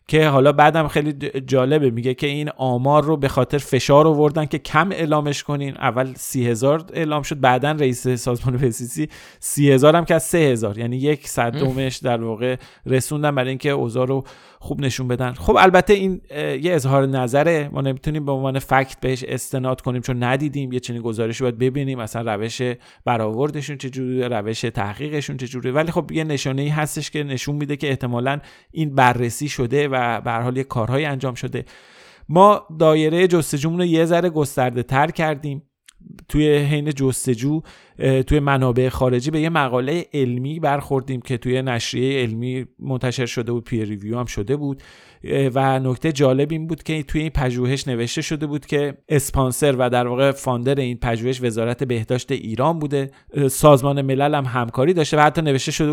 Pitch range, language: 125-150 Hz, Persian